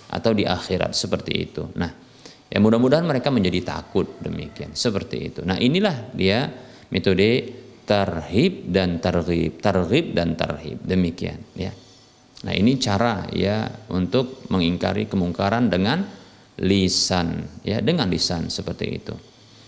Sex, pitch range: male, 95-130 Hz